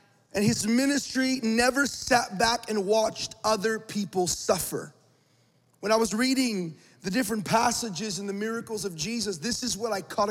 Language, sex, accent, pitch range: English, male, American, 205-245 Hz